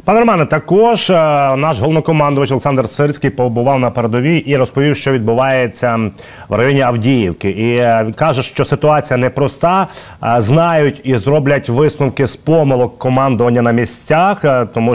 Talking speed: 135 wpm